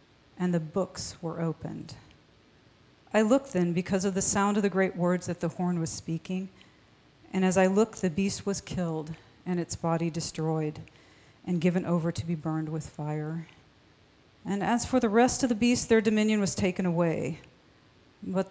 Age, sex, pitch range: 40-59, female, 165-195 Hz